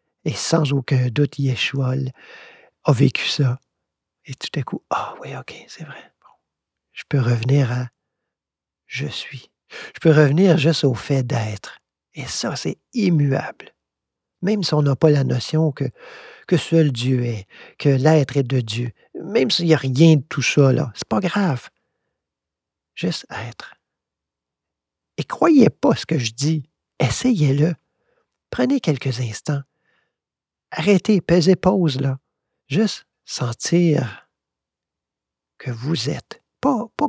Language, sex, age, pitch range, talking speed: French, male, 50-69, 125-155 Hz, 150 wpm